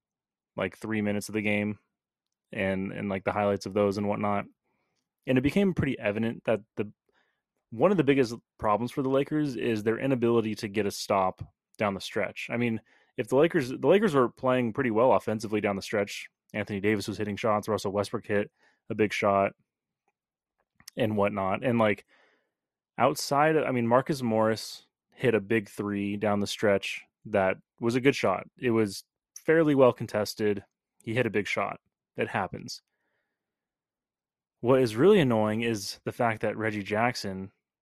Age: 20-39